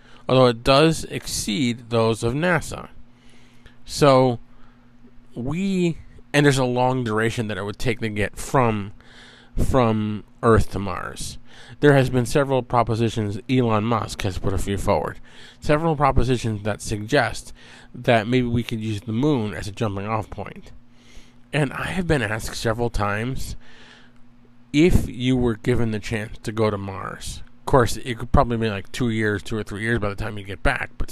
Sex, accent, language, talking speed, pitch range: male, American, English, 170 wpm, 110-130 Hz